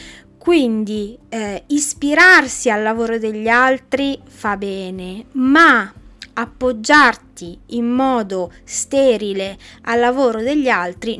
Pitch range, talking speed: 210-275 Hz, 95 wpm